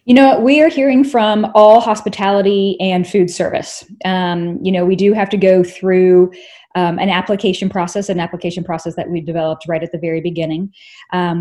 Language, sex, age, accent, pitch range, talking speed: English, female, 20-39, American, 170-195 Hz, 190 wpm